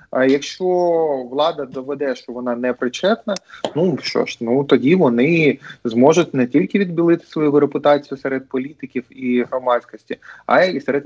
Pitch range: 125-160 Hz